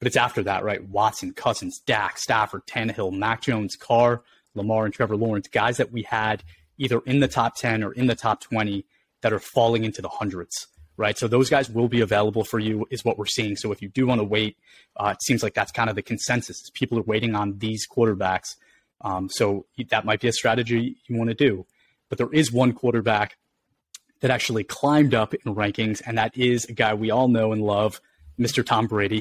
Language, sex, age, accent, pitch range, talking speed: English, male, 30-49, American, 110-130 Hz, 220 wpm